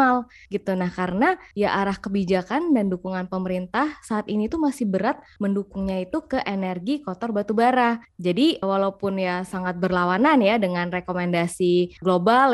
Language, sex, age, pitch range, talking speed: Indonesian, female, 20-39, 180-235 Hz, 140 wpm